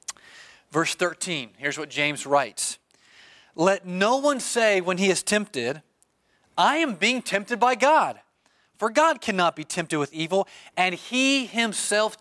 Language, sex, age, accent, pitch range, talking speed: English, male, 40-59, American, 165-210 Hz, 145 wpm